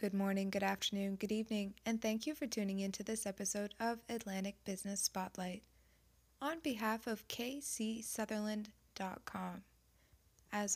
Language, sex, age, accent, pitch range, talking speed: English, female, 20-39, American, 195-230 Hz, 135 wpm